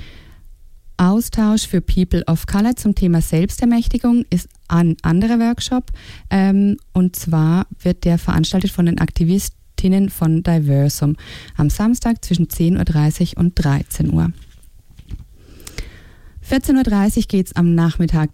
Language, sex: English, female